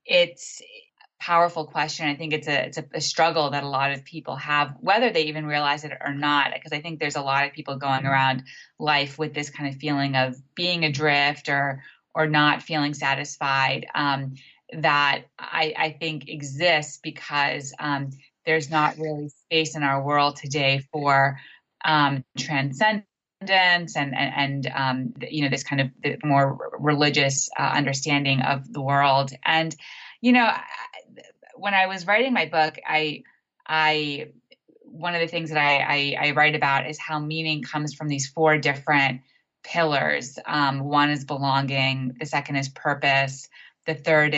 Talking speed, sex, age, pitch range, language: 170 wpm, female, 20-39, 140-155 Hz, English